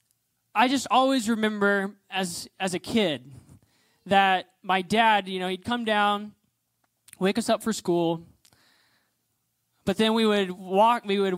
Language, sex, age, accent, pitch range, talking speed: English, male, 20-39, American, 160-210 Hz, 150 wpm